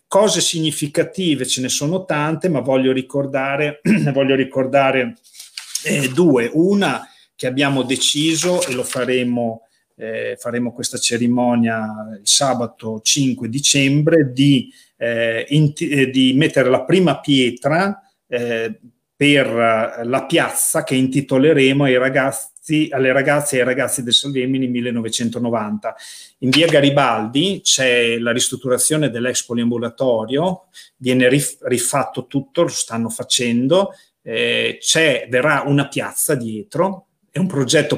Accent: native